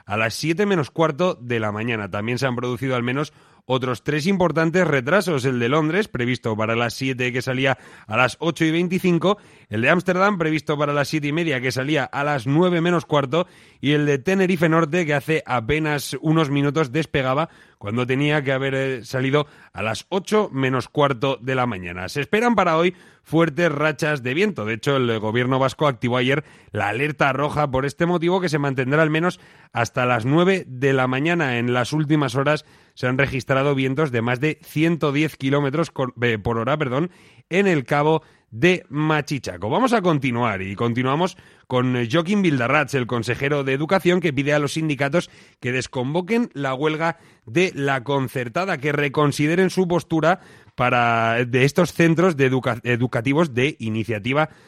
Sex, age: male, 30-49